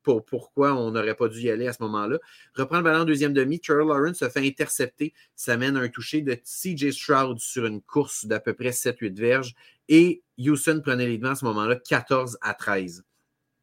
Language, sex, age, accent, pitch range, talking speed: French, male, 30-49, Canadian, 120-150 Hz, 215 wpm